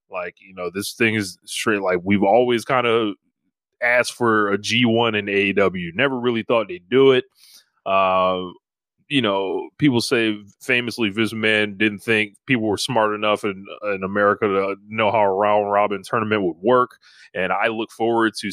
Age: 20-39